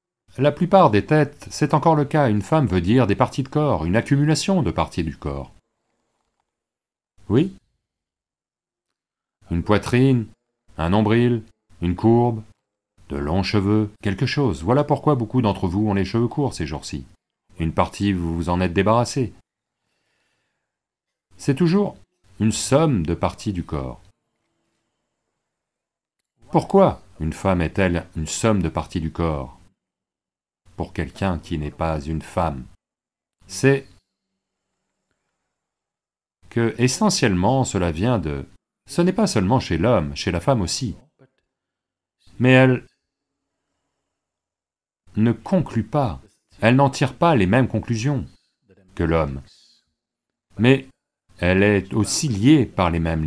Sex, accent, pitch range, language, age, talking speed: male, French, 90-130 Hz, English, 40-59, 130 wpm